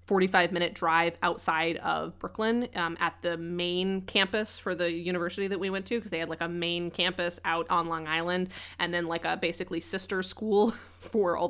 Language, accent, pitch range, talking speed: English, American, 170-200 Hz, 200 wpm